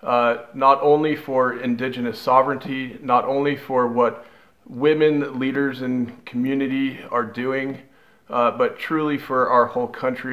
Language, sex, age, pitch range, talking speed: English, male, 40-59, 125-150 Hz, 135 wpm